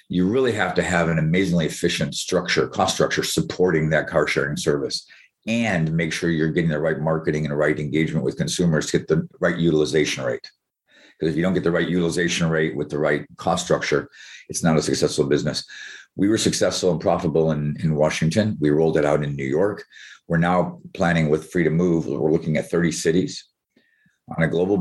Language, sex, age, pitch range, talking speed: English, male, 50-69, 80-100 Hz, 205 wpm